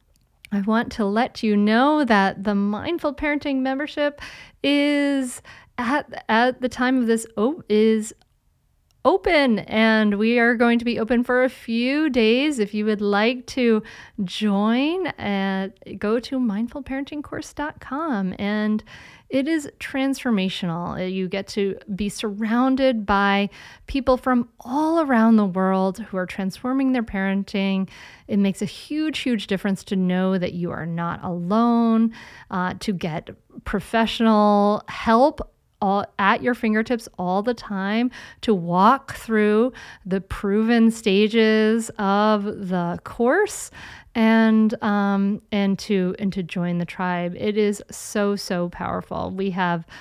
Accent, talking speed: American, 135 wpm